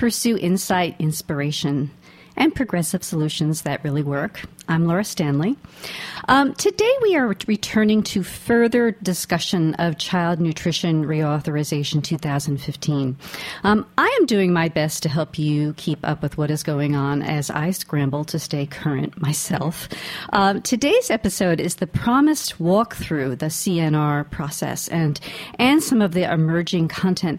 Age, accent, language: 50-69, American, English